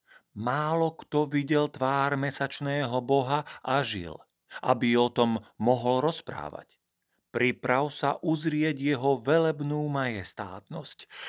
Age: 40-59